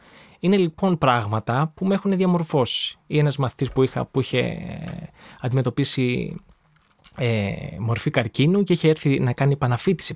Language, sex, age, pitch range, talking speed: Greek, male, 20-39, 130-175 Hz, 140 wpm